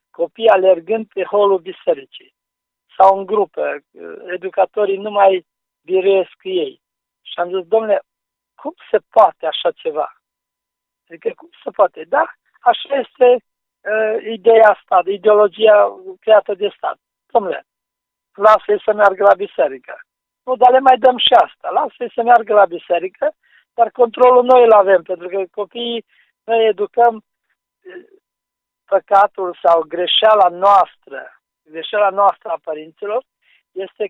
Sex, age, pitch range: male, 50-69, 185-235 Hz